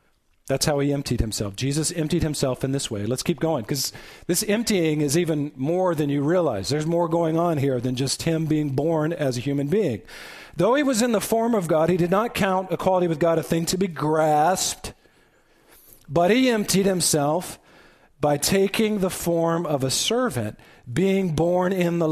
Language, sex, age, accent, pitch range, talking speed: English, male, 40-59, American, 130-175 Hz, 195 wpm